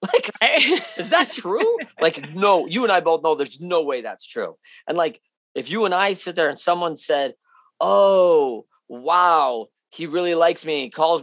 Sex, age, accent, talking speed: male, 30-49, American, 180 wpm